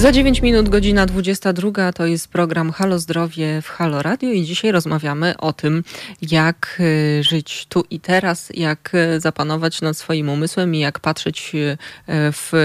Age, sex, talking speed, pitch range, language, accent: 20-39, female, 150 wpm, 155-180 Hz, Polish, native